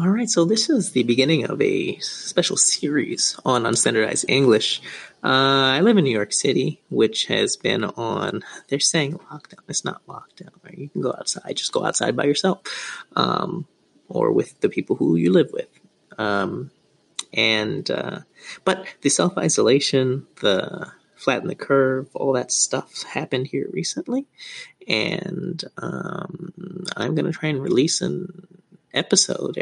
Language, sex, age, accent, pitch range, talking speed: English, male, 20-39, American, 135-185 Hz, 155 wpm